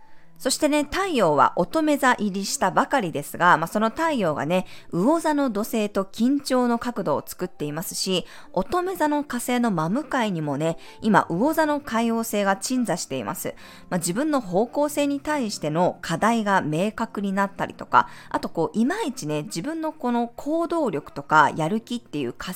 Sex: female